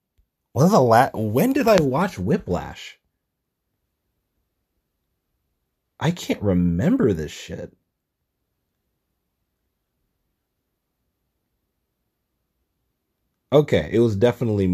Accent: American